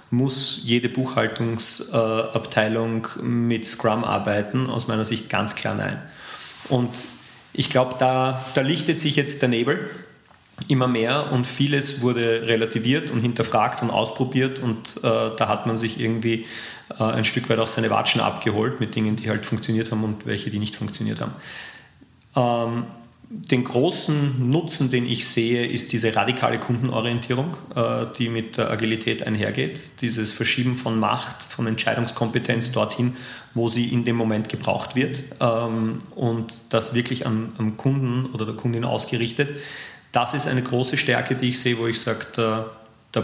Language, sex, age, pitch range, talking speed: German, male, 30-49, 115-130 Hz, 155 wpm